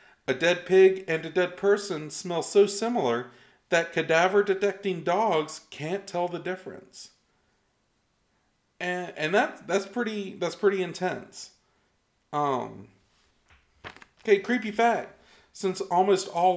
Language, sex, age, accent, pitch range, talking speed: English, male, 40-59, American, 145-195 Hz, 115 wpm